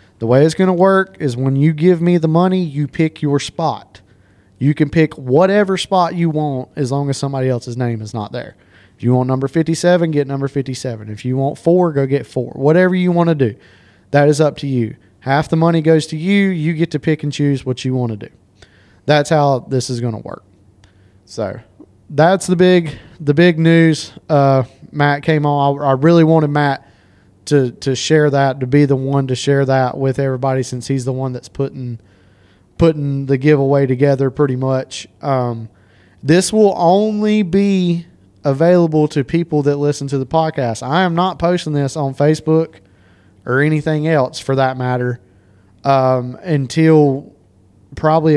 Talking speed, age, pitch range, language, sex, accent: 190 wpm, 30-49, 125-160 Hz, English, male, American